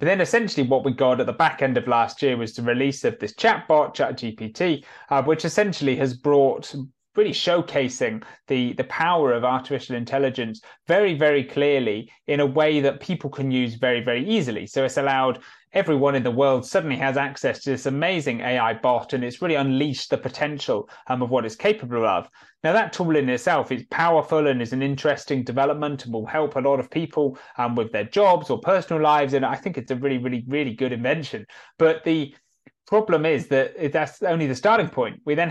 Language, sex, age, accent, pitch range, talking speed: English, male, 30-49, British, 125-150 Hz, 205 wpm